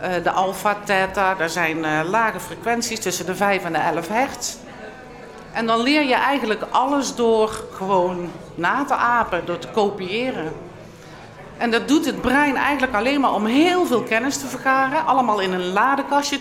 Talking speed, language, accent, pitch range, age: 170 wpm, Dutch, Dutch, 185-255 Hz, 50-69